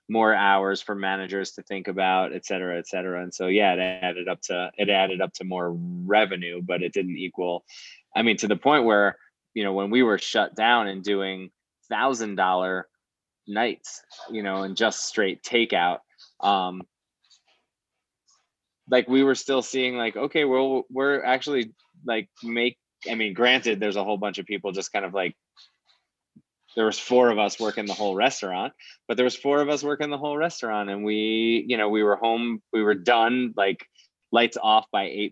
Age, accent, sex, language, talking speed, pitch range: 20-39, American, male, English, 190 wpm, 95-120 Hz